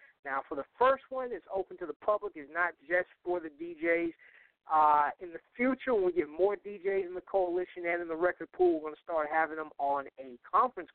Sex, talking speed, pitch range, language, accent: male, 230 wpm, 160-220 Hz, English, American